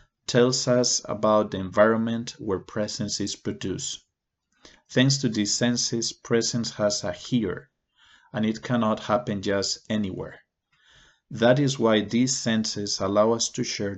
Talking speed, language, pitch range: 135 wpm, English, 100-120 Hz